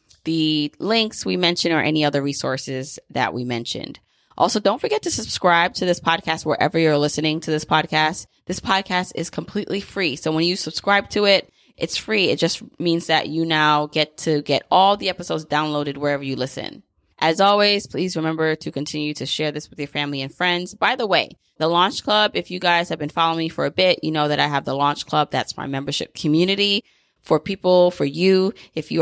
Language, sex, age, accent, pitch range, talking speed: English, female, 20-39, American, 150-185 Hz, 210 wpm